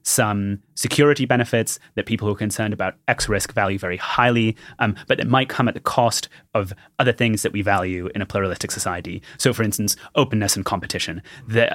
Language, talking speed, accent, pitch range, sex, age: English, 200 wpm, British, 100-120 Hz, male, 30-49